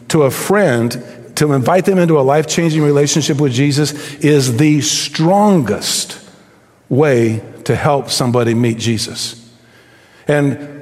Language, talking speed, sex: English, 120 wpm, male